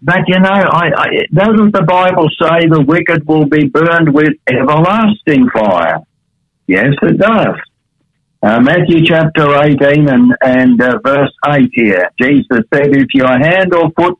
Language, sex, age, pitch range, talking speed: English, male, 60-79, 135-170 Hz, 155 wpm